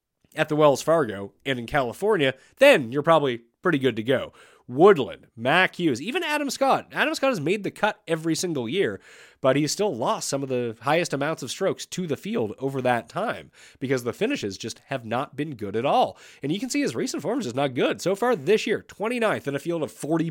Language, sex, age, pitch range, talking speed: English, male, 30-49, 140-225 Hz, 225 wpm